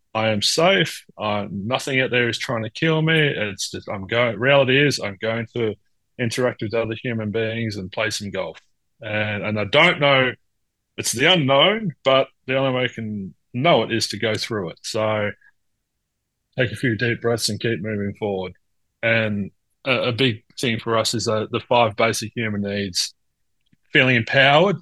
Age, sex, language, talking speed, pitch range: 30-49, male, English, 185 wpm, 105-125 Hz